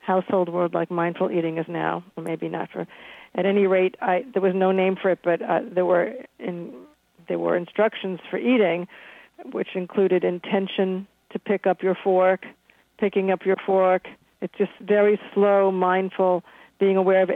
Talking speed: 175 wpm